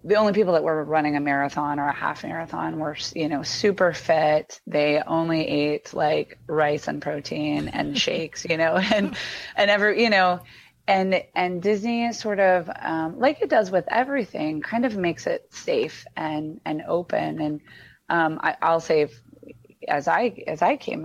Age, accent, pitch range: 20-39, American, 150-195 Hz